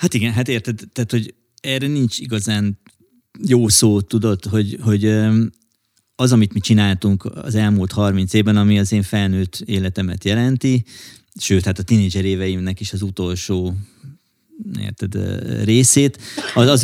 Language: Hungarian